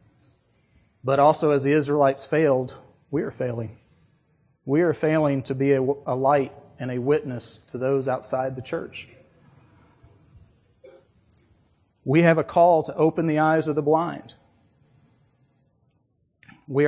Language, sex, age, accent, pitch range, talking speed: English, male, 40-59, American, 120-145 Hz, 130 wpm